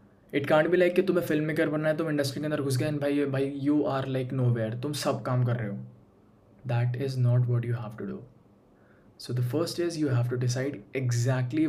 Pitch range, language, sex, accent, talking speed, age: 120-150 Hz, Hindi, male, native, 240 wpm, 20-39